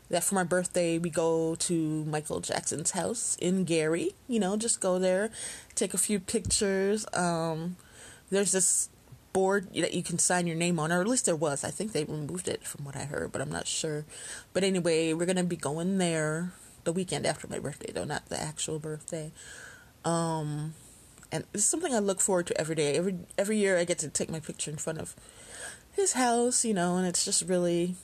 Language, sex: English, female